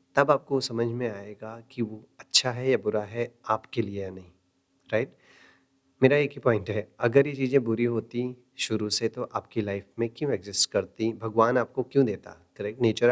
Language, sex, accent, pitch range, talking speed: Hindi, male, native, 110-135 Hz, 195 wpm